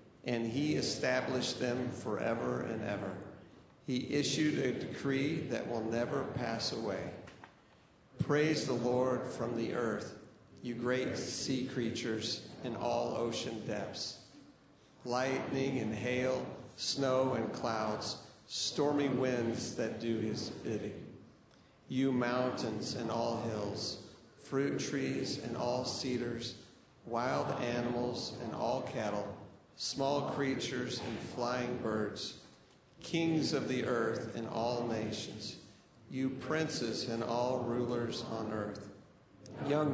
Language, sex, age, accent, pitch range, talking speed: English, male, 50-69, American, 115-130 Hz, 115 wpm